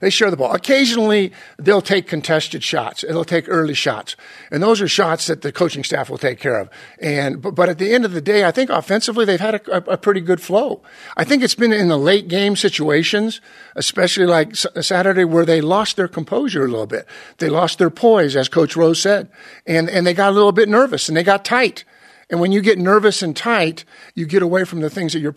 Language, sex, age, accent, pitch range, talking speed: English, male, 50-69, American, 165-220 Hz, 230 wpm